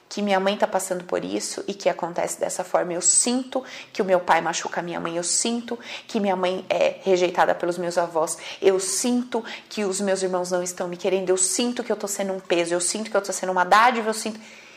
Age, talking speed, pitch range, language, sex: 30-49, 245 wpm, 175-225 Hz, Portuguese, female